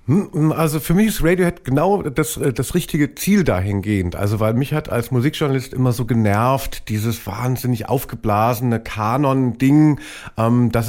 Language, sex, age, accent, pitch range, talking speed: German, male, 50-69, German, 110-130 Hz, 140 wpm